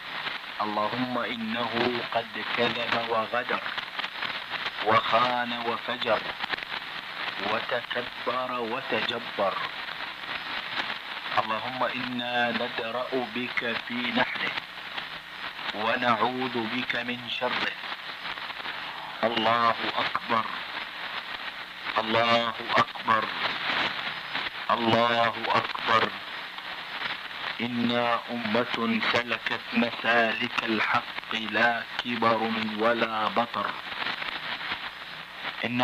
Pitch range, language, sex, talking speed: 115-120 Hz, Italian, male, 65 wpm